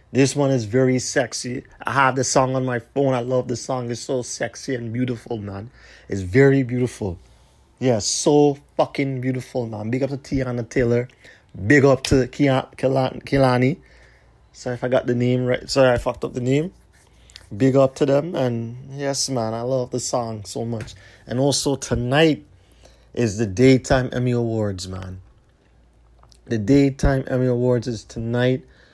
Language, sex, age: English, male, 30-49